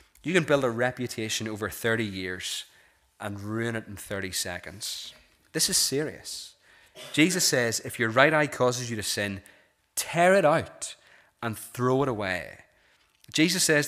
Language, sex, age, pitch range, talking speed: English, male, 30-49, 110-140 Hz, 155 wpm